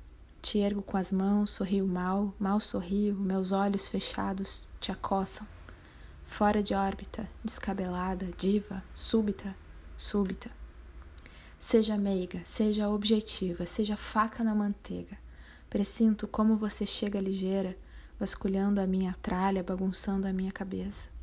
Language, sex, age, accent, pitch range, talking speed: Portuguese, female, 20-39, Brazilian, 180-205 Hz, 120 wpm